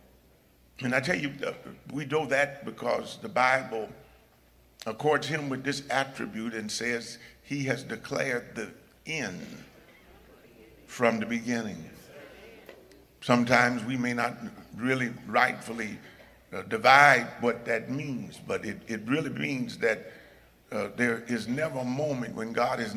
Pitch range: 120-180 Hz